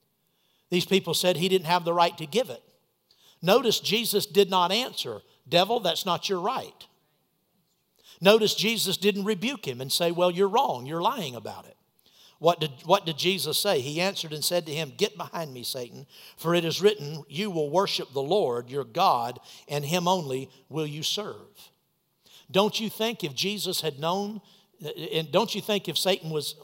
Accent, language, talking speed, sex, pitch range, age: American, English, 185 wpm, male, 160-210 Hz, 60-79